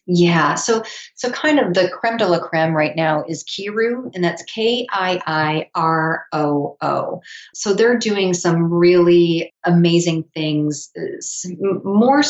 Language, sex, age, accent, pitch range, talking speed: English, female, 40-59, American, 160-195 Hz, 120 wpm